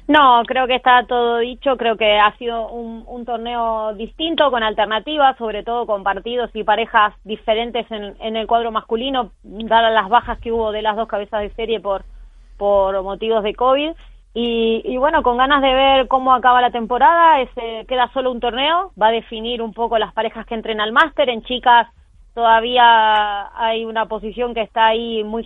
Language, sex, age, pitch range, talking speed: Spanish, female, 20-39, 220-255 Hz, 195 wpm